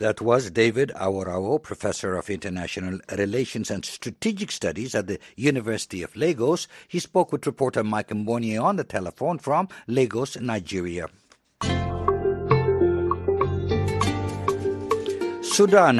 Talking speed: 110 wpm